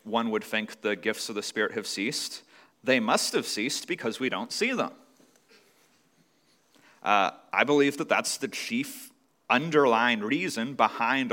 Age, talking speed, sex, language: 30-49, 155 wpm, male, English